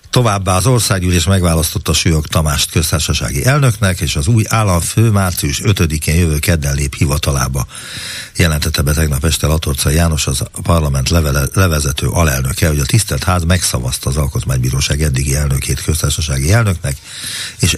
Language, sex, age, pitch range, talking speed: Hungarian, male, 60-79, 80-105 Hz, 140 wpm